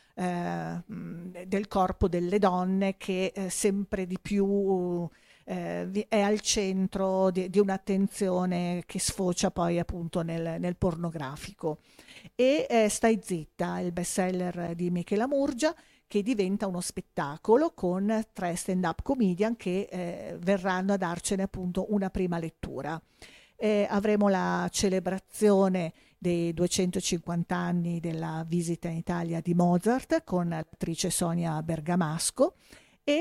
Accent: native